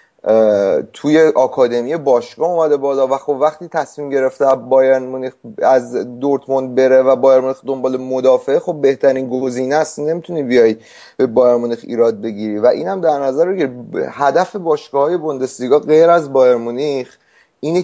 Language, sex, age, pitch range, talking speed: Persian, male, 30-49, 120-150 Hz, 140 wpm